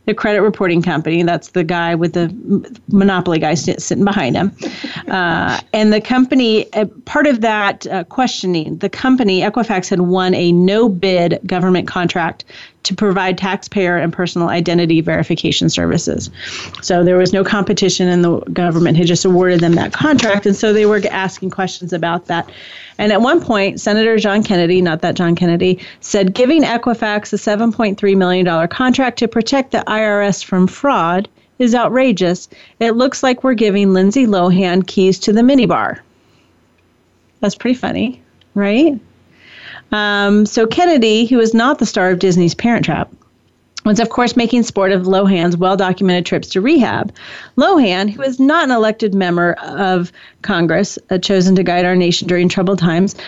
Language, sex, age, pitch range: English, female, 30-49, 180-225 Hz